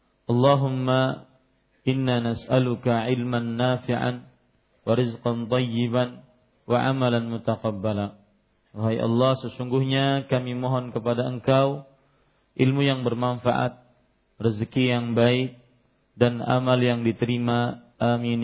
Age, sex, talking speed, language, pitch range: 40-59, male, 95 wpm, Malay, 115-130 Hz